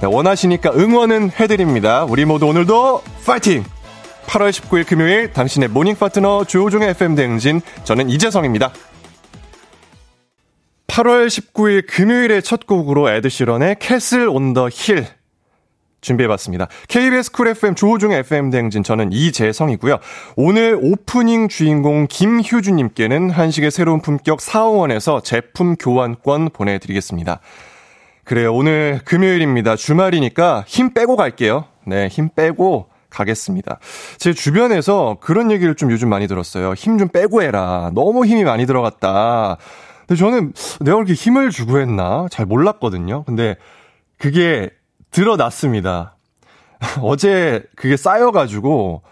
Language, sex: Korean, male